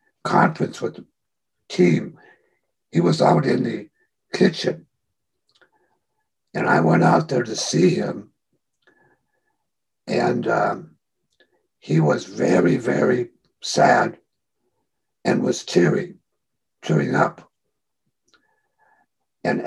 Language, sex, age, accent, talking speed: English, male, 60-79, American, 95 wpm